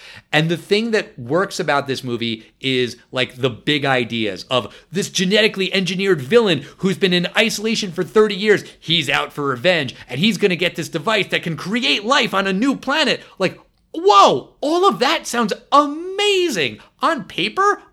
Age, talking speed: 30-49, 175 wpm